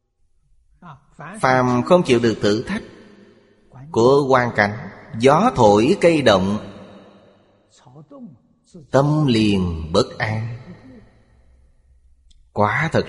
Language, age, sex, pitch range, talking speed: Vietnamese, 30-49, male, 100-130 Hz, 85 wpm